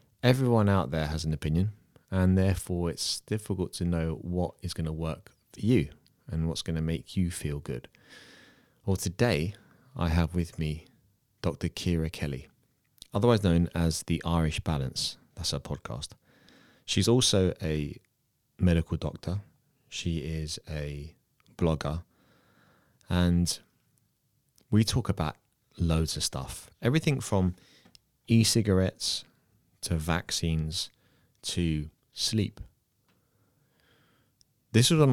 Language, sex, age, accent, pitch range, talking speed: English, male, 30-49, British, 80-105 Hz, 120 wpm